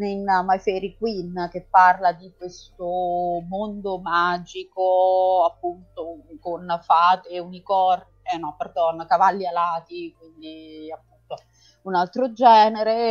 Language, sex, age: Italian, female, 30-49